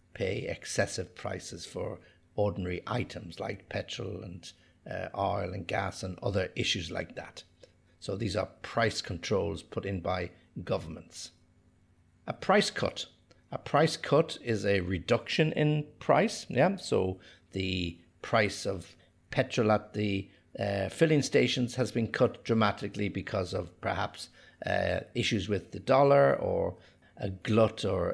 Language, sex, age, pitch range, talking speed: English, male, 60-79, 95-110 Hz, 140 wpm